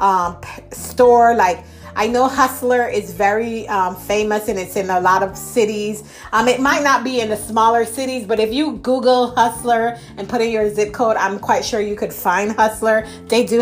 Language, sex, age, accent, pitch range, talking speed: English, female, 30-49, American, 195-240 Hz, 205 wpm